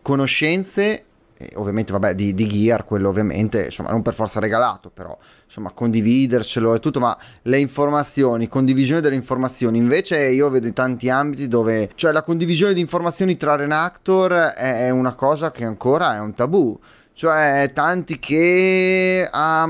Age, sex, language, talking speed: 30-49, male, Italian, 155 wpm